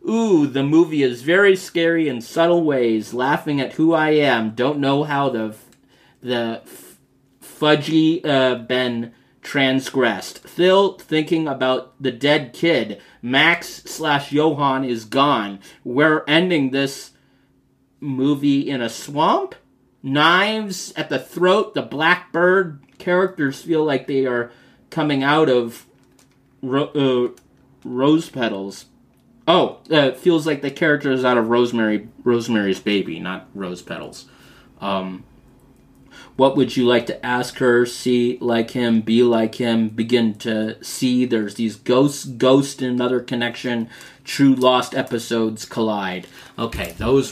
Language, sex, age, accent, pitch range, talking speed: English, male, 30-49, American, 120-150 Hz, 135 wpm